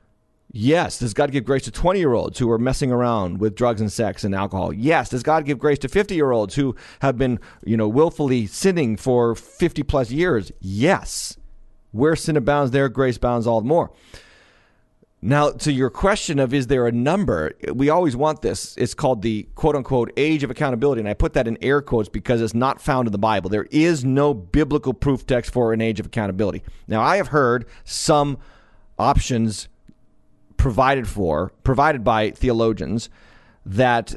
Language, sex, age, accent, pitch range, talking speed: English, male, 30-49, American, 105-140 Hz, 175 wpm